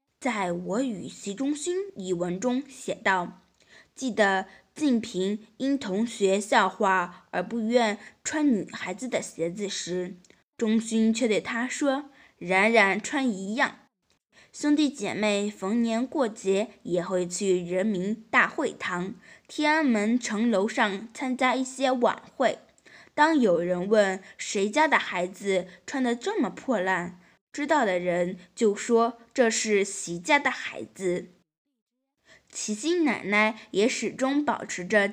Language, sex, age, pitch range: Chinese, female, 20-39, 190-255 Hz